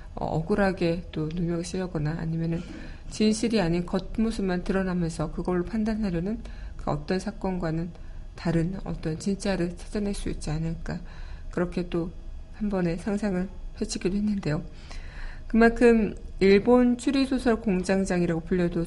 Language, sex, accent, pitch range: Korean, female, native, 160-205 Hz